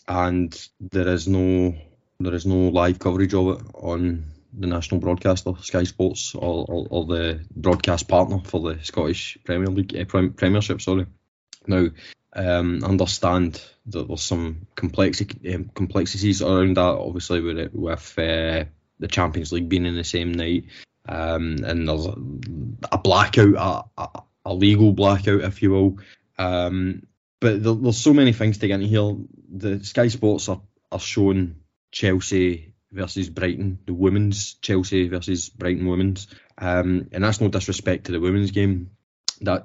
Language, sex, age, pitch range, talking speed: English, male, 20-39, 85-100 Hz, 155 wpm